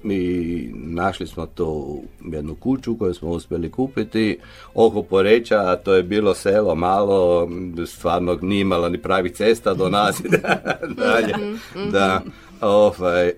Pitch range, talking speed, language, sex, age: 80-100 Hz, 135 wpm, Croatian, male, 60-79